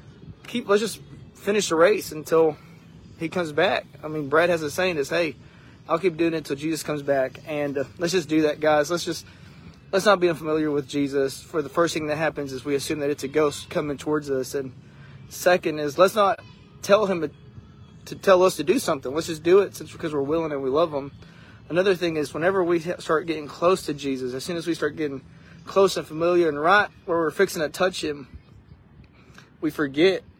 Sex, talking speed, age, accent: male, 220 wpm, 20-39, American